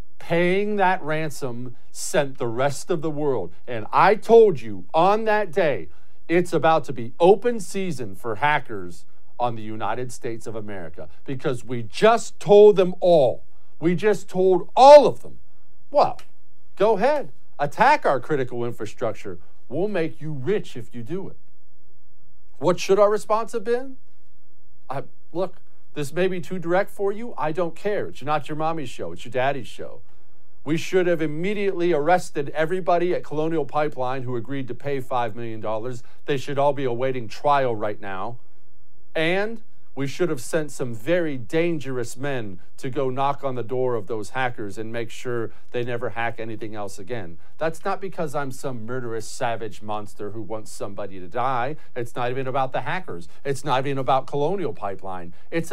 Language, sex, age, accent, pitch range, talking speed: English, male, 50-69, American, 120-180 Hz, 170 wpm